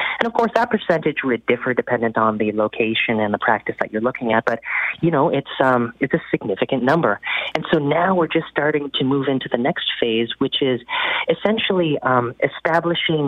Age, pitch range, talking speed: 30-49, 125-155 Hz, 195 wpm